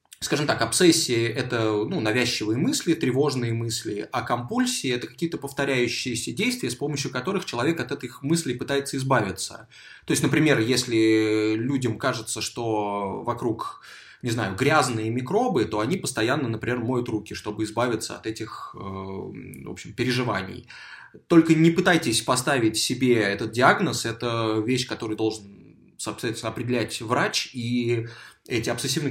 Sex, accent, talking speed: male, native, 140 wpm